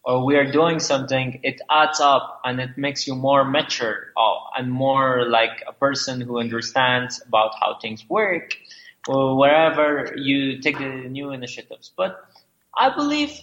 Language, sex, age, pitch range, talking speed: English, male, 20-39, 130-165 Hz, 155 wpm